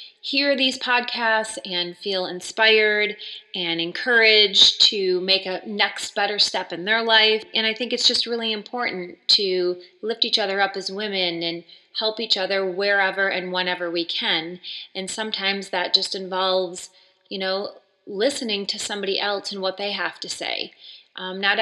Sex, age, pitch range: female, 30-49, 185-215 Hz